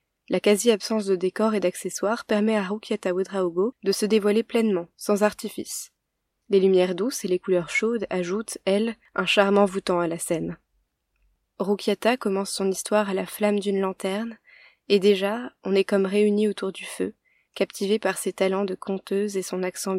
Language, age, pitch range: French, 20-39, 185-210 Hz